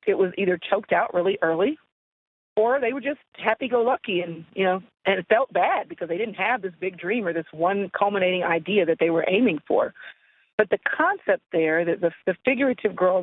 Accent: American